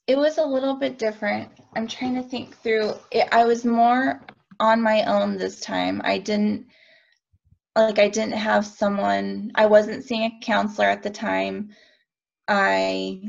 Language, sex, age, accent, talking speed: English, female, 20-39, American, 165 wpm